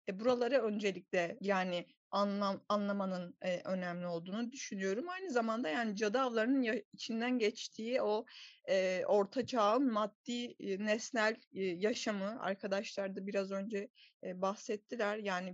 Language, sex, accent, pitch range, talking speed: Turkish, female, native, 190-245 Hz, 115 wpm